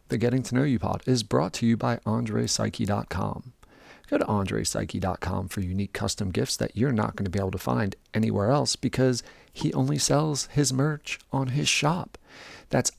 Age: 40-59